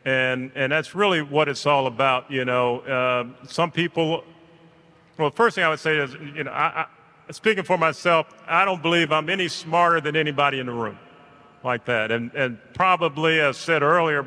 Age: 40-59